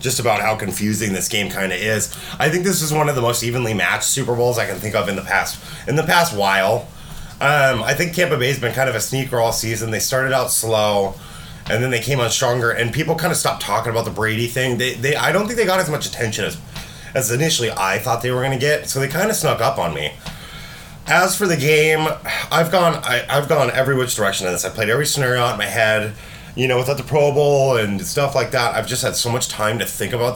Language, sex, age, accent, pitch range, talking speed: English, male, 30-49, American, 110-150 Hz, 265 wpm